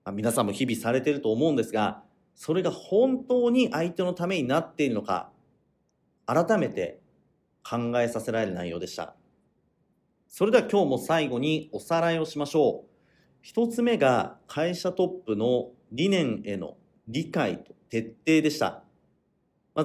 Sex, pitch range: male, 125-195 Hz